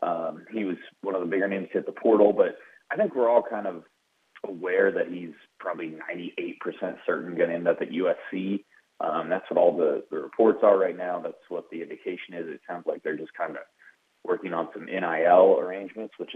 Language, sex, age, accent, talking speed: English, male, 30-49, American, 215 wpm